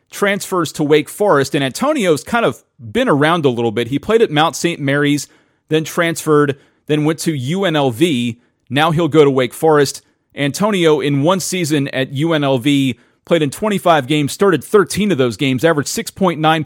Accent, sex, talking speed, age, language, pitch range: American, male, 170 wpm, 40-59, English, 145-185 Hz